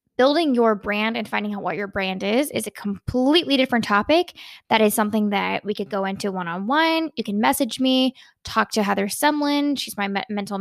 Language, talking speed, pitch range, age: English, 200 wpm, 205-280 Hz, 10-29